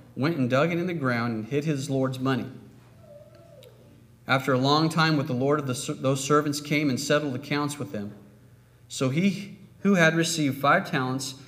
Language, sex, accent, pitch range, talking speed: English, male, American, 125-160 Hz, 185 wpm